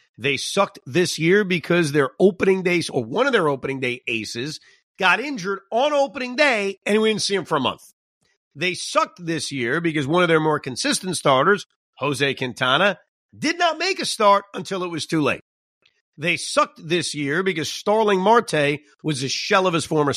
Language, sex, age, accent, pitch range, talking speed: English, male, 50-69, American, 145-200 Hz, 190 wpm